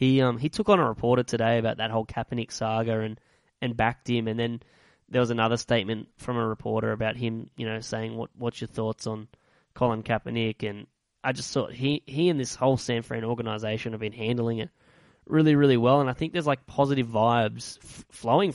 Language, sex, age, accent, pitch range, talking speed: English, male, 10-29, Australian, 115-145 Hz, 215 wpm